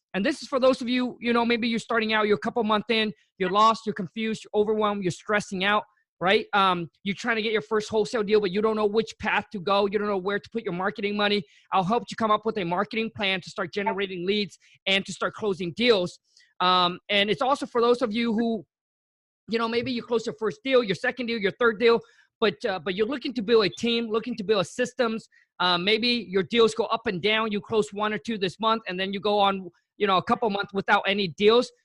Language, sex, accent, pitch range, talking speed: English, male, American, 185-225 Hz, 260 wpm